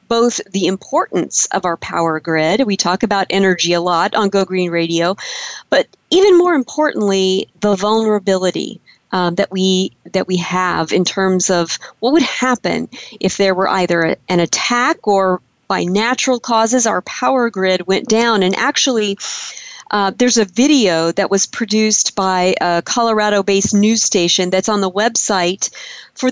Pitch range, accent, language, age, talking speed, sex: 185-235 Hz, American, English, 40-59, 155 wpm, female